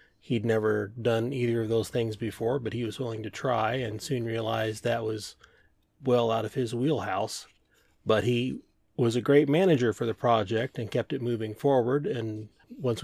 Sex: male